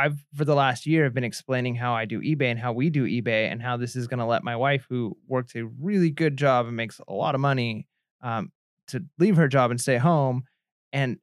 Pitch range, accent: 125-150 Hz, American